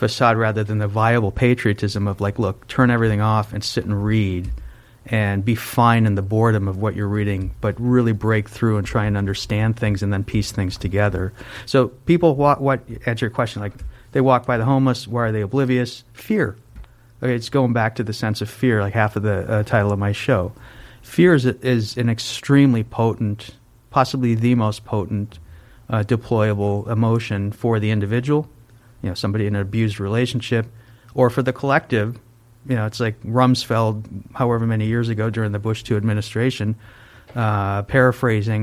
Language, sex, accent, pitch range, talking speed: English, male, American, 105-120 Hz, 185 wpm